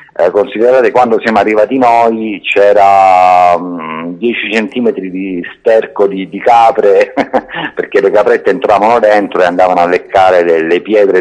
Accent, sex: native, male